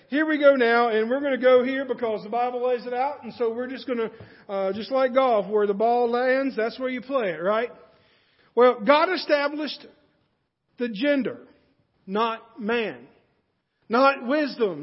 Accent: American